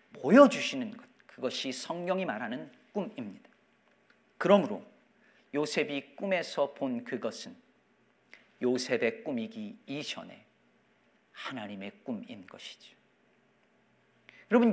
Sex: male